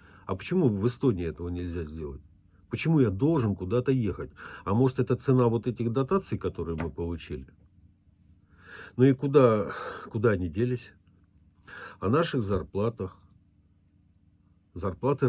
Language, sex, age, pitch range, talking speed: Russian, male, 50-69, 90-120 Hz, 125 wpm